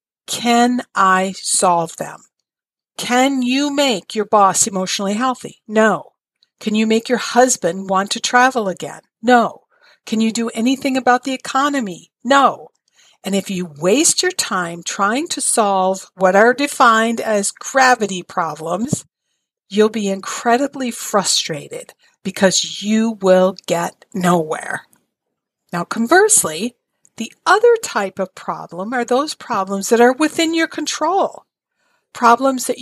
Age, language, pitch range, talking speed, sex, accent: 50-69, English, 195-270 Hz, 130 wpm, female, American